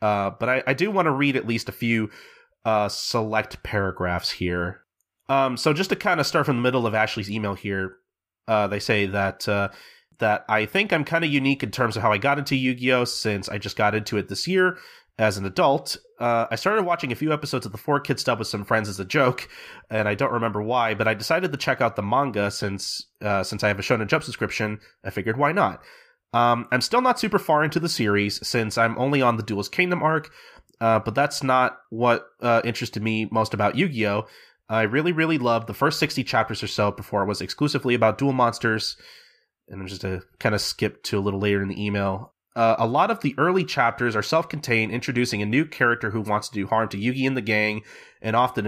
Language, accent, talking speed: English, American, 235 wpm